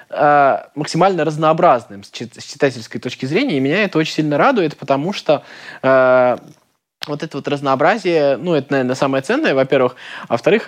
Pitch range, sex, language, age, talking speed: 125-155 Hz, male, Russian, 20-39, 150 wpm